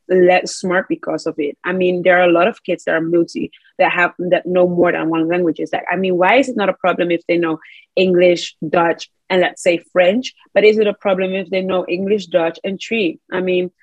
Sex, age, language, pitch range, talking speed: female, 20-39, English, 175-205 Hz, 250 wpm